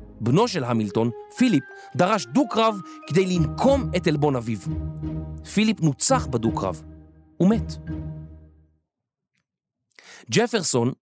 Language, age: Hebrew, 40-59